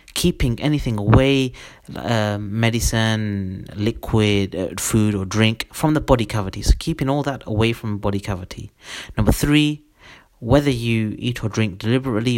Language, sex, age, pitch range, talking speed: Arabic, male, 30-49, 105-135 Hz, 145 wpm